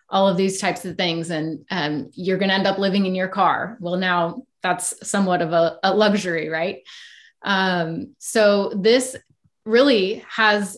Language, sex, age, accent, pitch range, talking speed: English, female, 20-39, American, 180-215 Hz, 165 wpm